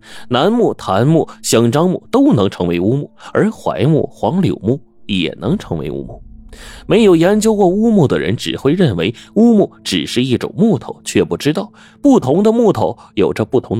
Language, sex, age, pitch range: Chinese, male, 30-49, 100-155 Hz